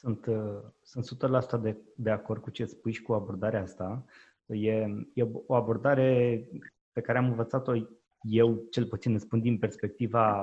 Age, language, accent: 20-39, Romanian, native